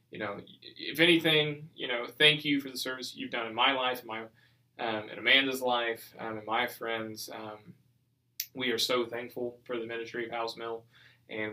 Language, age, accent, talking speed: English, 20-39, American, 185 wpm